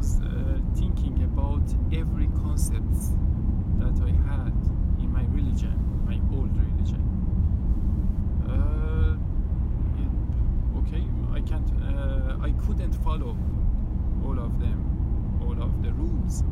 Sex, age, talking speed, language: male, 50-69, 105 wpm, Swedish